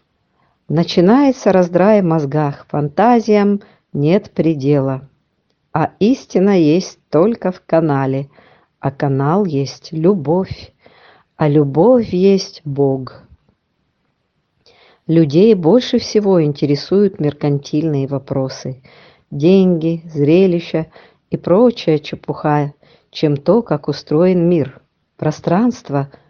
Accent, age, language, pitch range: native, 50-69, Russian, 145-185 Hz